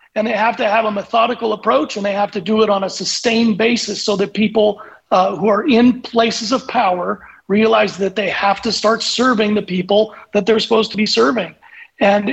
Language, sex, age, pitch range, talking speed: English, male, 40-59, 205-230 Hz, 215 wpm